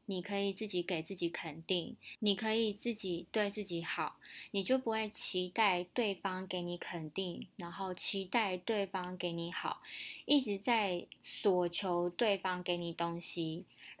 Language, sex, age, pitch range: Chinese, female, 20-39, 175-215 Hz